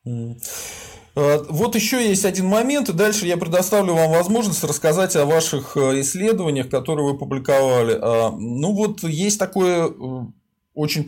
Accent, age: native, 20-39